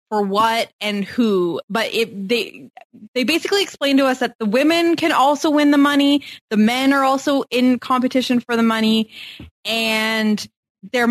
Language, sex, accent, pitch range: English, female, American, 200-255 Hz